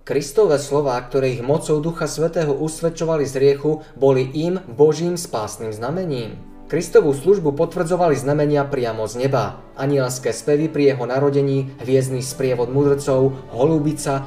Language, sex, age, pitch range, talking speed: Slovak, male, 20-39, 120-150 Hz, 130 wpm